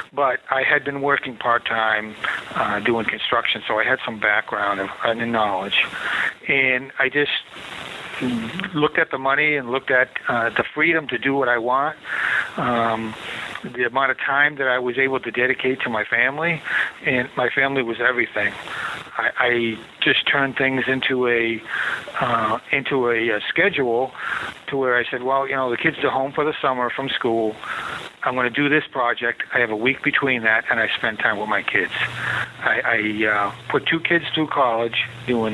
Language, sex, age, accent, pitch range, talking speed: English, male, 50-69, American, 110-135 Hz, 180 wpm